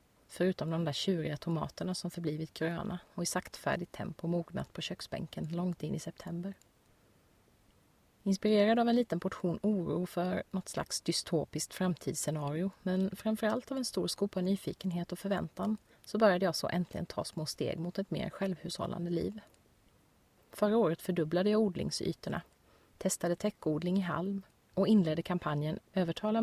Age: 30-49